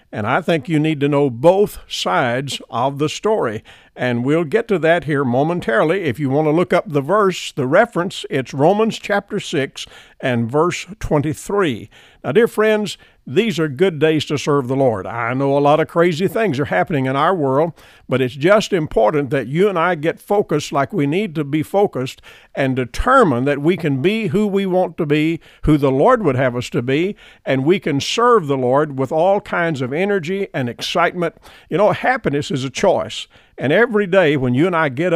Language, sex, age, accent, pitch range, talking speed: English, male, 50-69, American, 140-185 Hz, 205 wpm